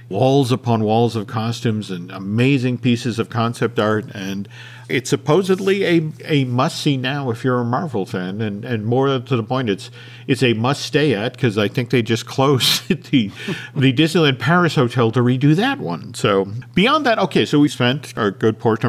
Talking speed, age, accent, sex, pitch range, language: 185 wpm, 50-69, American, male, 120-155 Hz, English